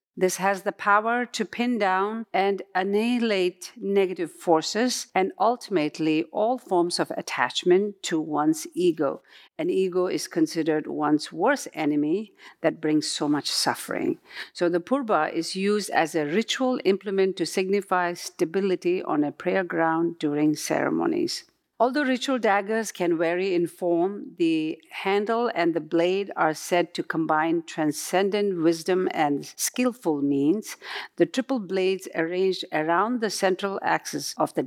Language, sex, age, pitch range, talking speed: English, female, 50-69, 165-220 Hz, 140 wpm